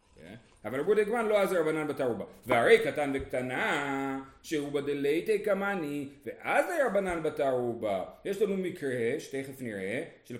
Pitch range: 135-220 Hz